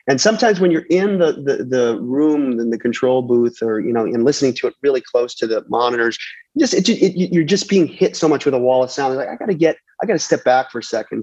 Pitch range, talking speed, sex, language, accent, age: 120-145 Hz, 285 wpm, male, English, American, 30-49